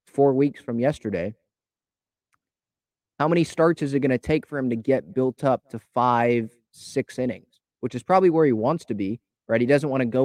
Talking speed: 210 wpm